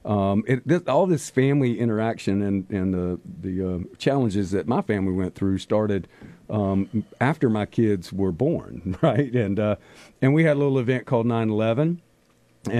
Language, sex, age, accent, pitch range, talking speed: English, male, 50-69, American, 95-115 Hz, 170 wpm